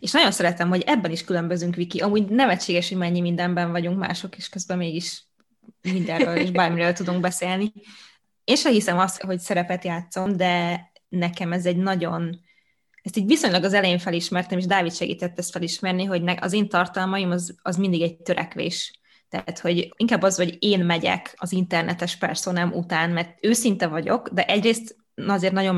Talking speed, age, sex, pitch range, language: 170 wpm, 20-39, female, 175-195 Hz, Hungarian